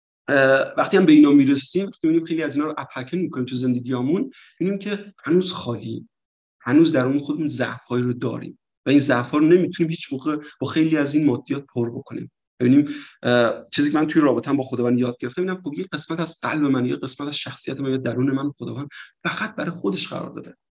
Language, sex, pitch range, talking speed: Persian, male, 125-150 Hz, 200 wpm